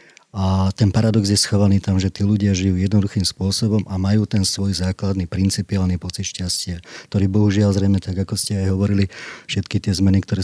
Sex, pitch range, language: male, 95-105 Hz, Slovak